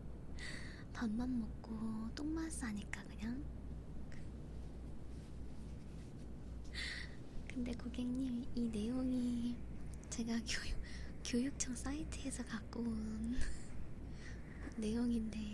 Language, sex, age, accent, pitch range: Korean, male, 20-39, native, 205-245 Hz